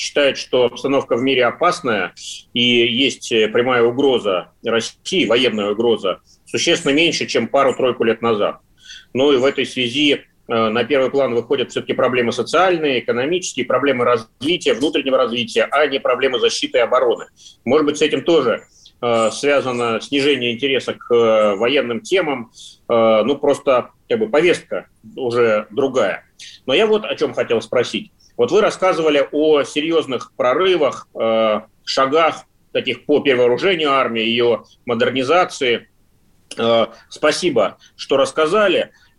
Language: Russian